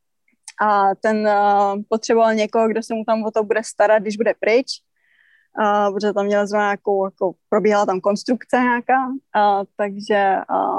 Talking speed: 155 wpm